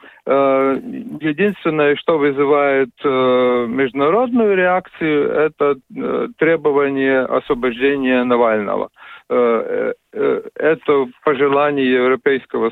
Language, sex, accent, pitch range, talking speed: Russian, male, native, 130-170 Hz, 55 wpm